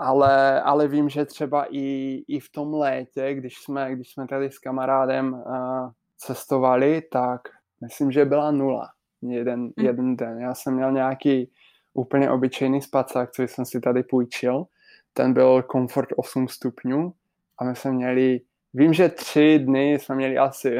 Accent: native